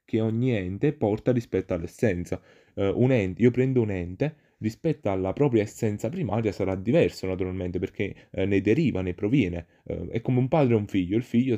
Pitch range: 95-130 Hz